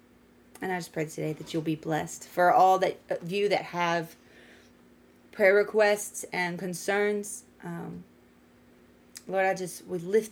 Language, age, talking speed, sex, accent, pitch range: English, 30-49, 150 wpm, female, American, 175-205 Hz